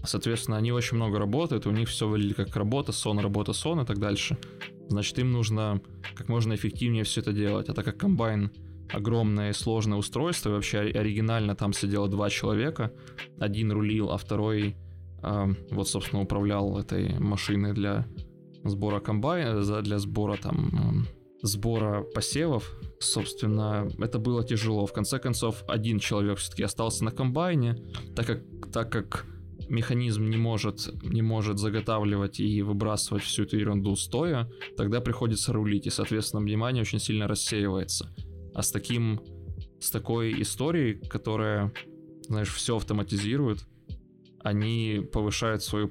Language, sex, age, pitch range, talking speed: Russian, male, 20-39, 100-115 Hz, 140 wpm